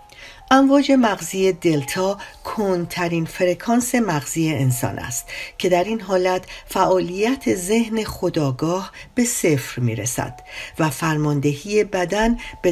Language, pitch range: Persian, 150-195 Hz